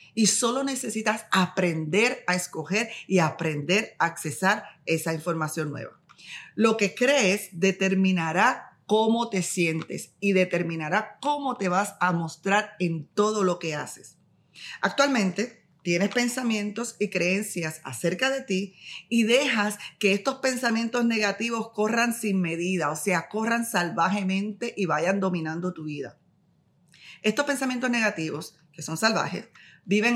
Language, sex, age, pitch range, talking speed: Spanish, female, 40-59, 165-215 Hz, 130 wpm